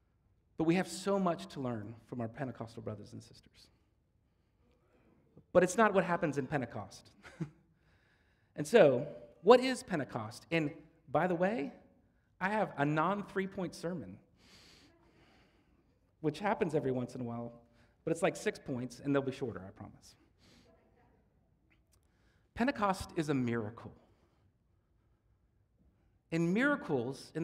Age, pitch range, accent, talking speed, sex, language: 40-59, 120-185 Hz, American, 130 wpm, male, English